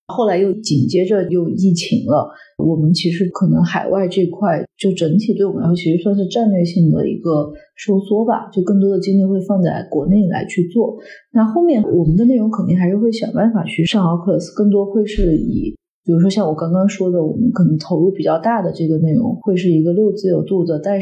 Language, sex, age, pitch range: Chinese, female, 30-49, 175-210 Hz